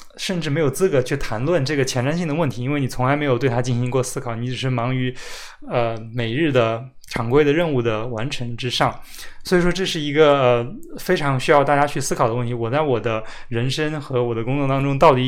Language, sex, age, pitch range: Chinese, male, 20-39, 120-150 Hz